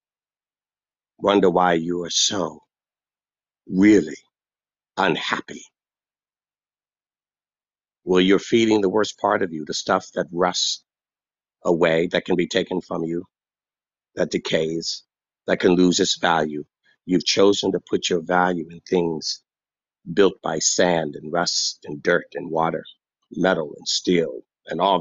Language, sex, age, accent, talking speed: English, male, 50-69, American, 130 wpm